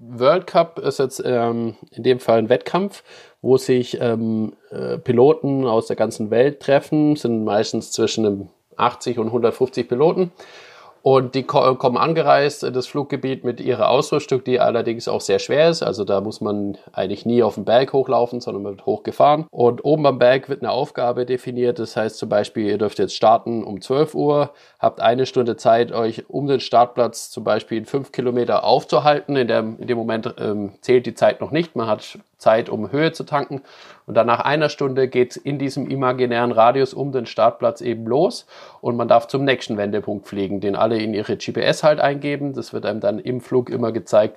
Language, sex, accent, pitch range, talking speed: German, male, German, 110-135 Hz, 195 wpm